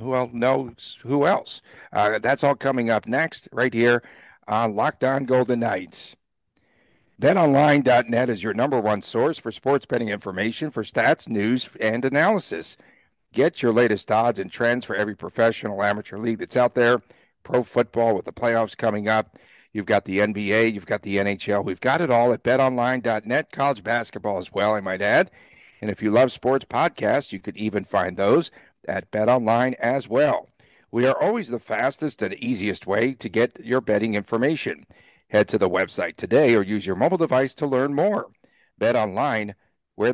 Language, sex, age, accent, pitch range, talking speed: English, male, 60-79, American, 105-125 Hz, 180 wpm